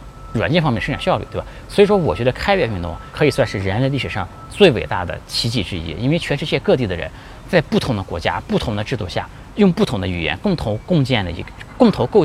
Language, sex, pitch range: Chinese, male, 105-145 Hz